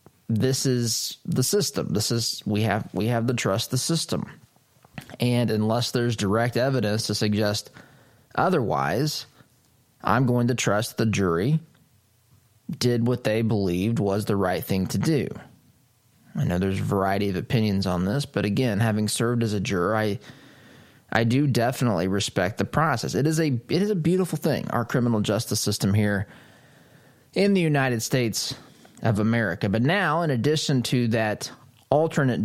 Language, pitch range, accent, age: English, 105-135 Hz, American, 20-39